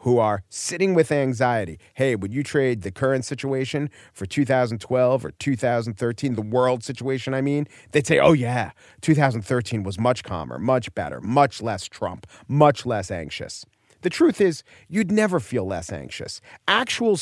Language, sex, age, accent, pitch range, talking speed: English, male, 40-59, American, 115-165 Hz, 160 wpm